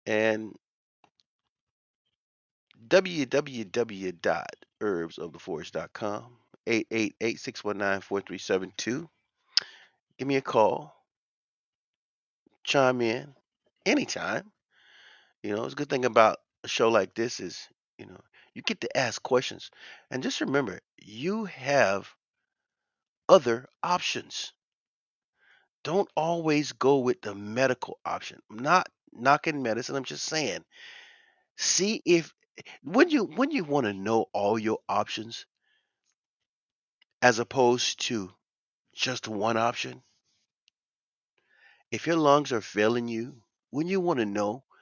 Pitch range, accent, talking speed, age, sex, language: 110-160 Hz, American, 105 wpm, 30-49, male, English